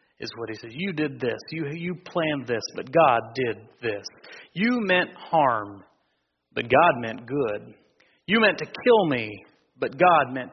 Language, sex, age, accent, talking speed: English, male, 40-59, American, 170 wpm